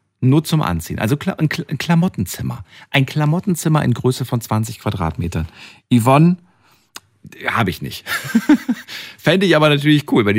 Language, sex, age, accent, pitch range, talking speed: German, male, 50-69, German, 85-120 Hz, 135 wpm